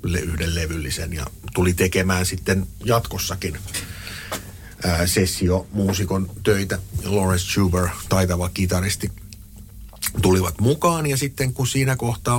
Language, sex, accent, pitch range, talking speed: Finnish, male, native, 90-100 Hz, 100 wpm